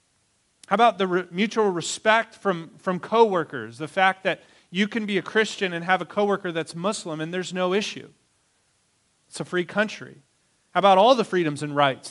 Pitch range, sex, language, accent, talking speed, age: 165-210 Hz, male, English, American, 190 wpm, 40-59